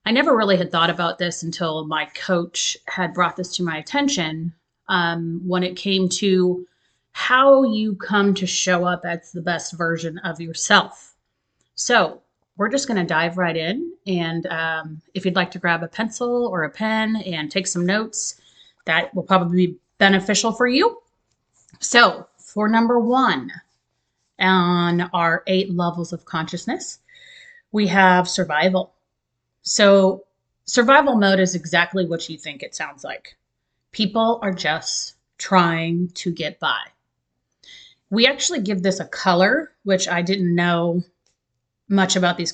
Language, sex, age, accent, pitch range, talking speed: English, female, 30-49, American, 170-215 Hz, 150 wpm